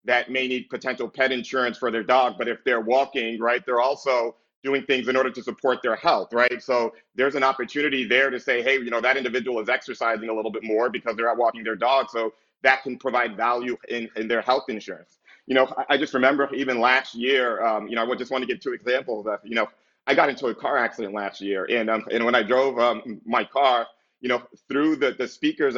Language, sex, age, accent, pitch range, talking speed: English, male, 30-49, American, 120-130 Hz, 240 wpm